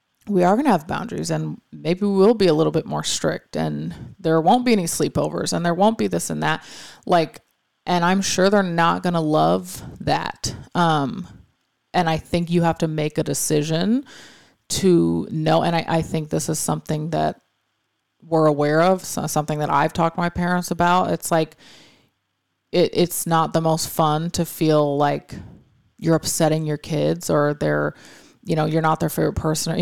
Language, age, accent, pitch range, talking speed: English, 30-49, American, 150-180 Hz, 190 wpm